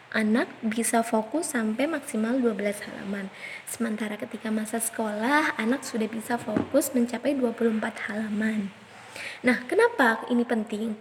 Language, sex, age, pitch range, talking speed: Indonesian, female, 20-39, 230-290 Hz, 120 wpm